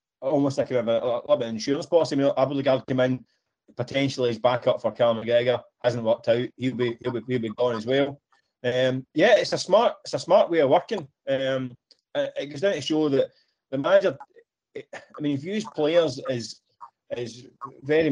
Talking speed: 190 wpm